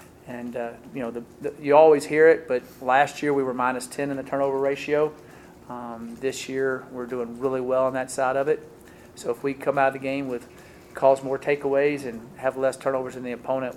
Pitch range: 120-135 Hz